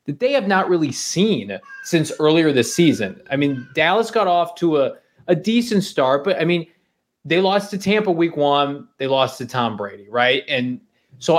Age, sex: 20-39, male